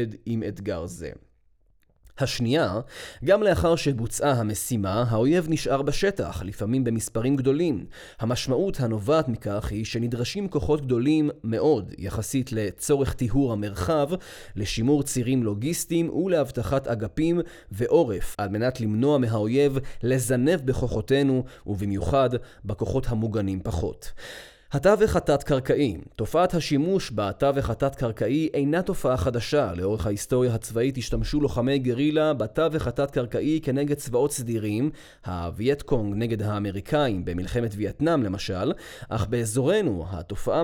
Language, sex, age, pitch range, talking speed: Hebrew, male, 30-49, 110-145 Hz, 100 wpm